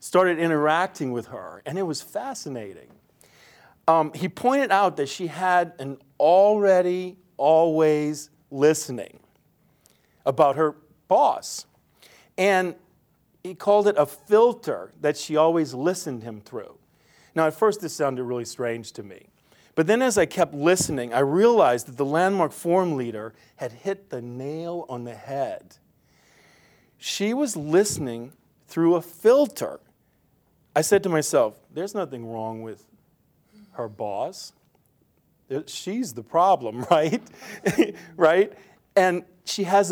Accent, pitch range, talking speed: American, 130-185 Hz, 130 wpm